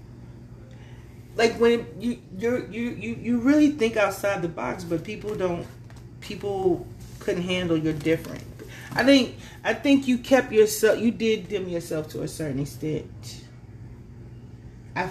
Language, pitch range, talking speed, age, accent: English, 120-200 Hz, 145 wpm, 30-49, American